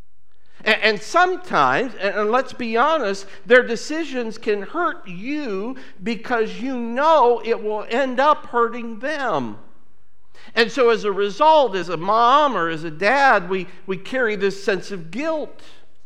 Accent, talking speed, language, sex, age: American, 145 wpm, English, male, 50-69